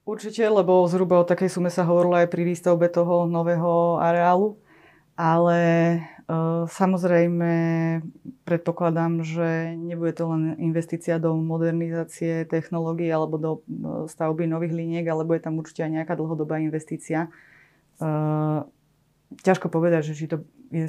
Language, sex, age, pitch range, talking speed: Slovak, female, 20-39, 155-170 Hz, 125 wpm